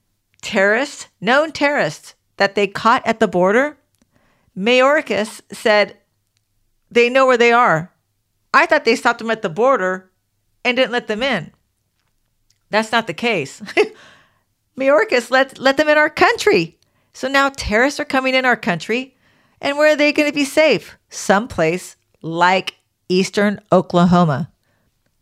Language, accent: English, American